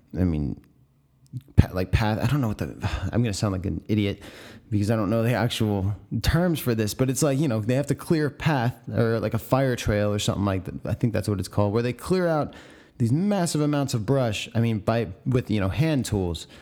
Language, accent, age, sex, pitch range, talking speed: English, American, 30-49, male, 105-135 Hz, 240 wpm